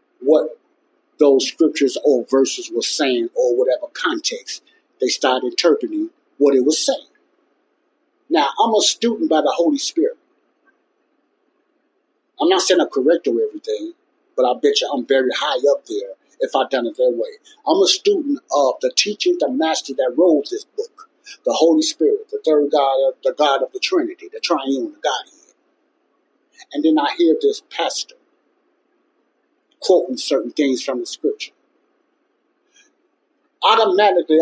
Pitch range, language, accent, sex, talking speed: 230-390 Hz, English, American, male, 150 wpm